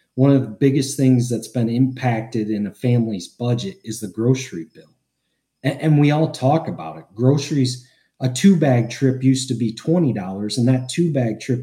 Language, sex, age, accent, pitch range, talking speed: English, male, 30-49, American, 115-155 Hz, 190 wpm